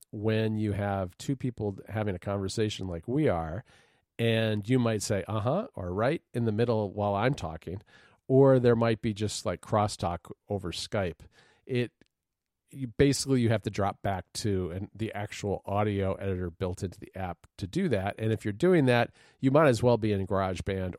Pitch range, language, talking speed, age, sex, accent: 100-120 Hz, English, 185 wpm, 40-59, male, American